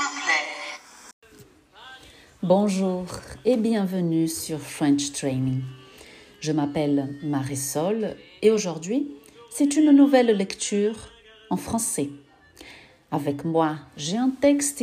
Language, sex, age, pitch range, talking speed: French, female, 50-69, 150-215 Hz, 90 wpm